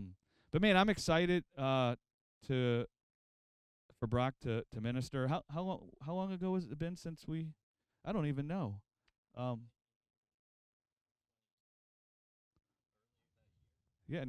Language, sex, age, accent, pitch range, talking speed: English, male, 30-49, American, 115-145 Hz, 120 wpm